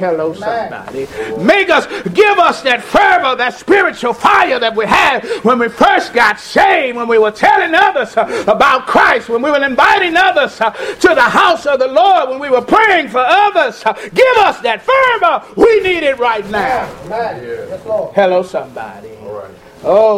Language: English